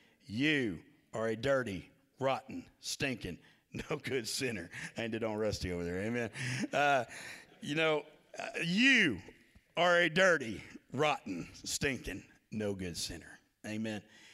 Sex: male